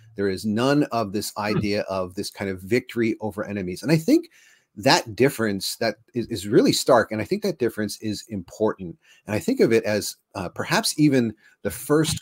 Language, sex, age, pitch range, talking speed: English, male, 40-59, 100-125 Hz, 195 wpm